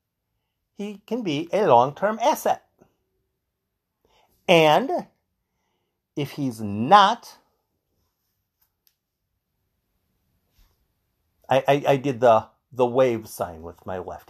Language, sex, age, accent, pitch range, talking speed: English, male, 50-69, American, 115-190 Hz, 90 wpm